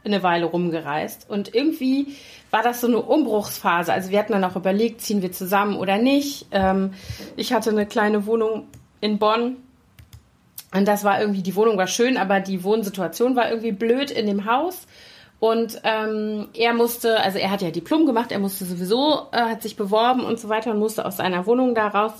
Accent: German